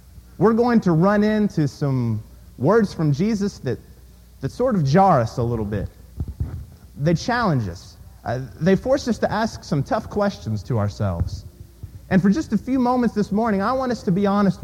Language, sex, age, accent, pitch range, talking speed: English, male, 30-49, American, 130-200 Hz, 190 wpm